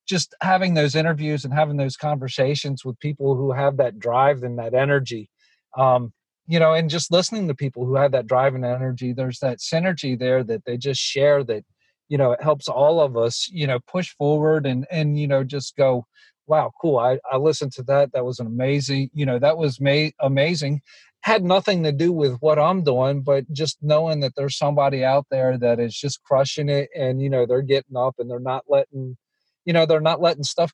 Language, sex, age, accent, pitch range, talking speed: English, male, 40-59, American, 130-155 Hz, 215 wpm